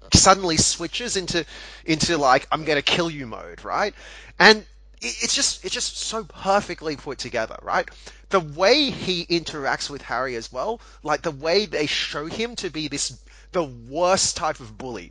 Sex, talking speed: male, 170 wpm